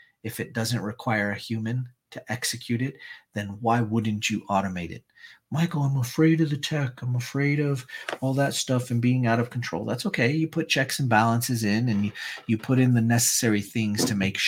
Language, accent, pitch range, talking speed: English, American, 110-135 Hz, 205 wpm